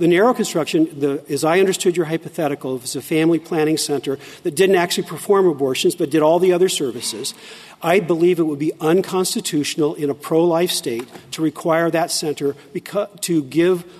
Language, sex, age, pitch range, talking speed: English, male, 50-69, 145-175 Hz, 170 wpm